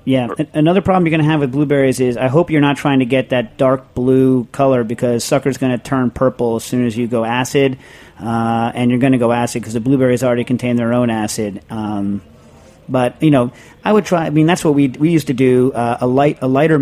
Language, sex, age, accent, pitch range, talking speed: English, male, 40-59, American, 115-140 Hz, 245 wpm